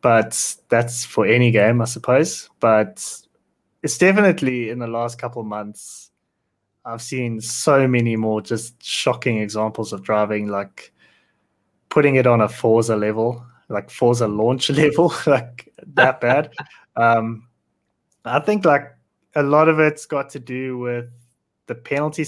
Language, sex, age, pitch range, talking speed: English, male, 20-39, 110-125 Hz, 145 wpm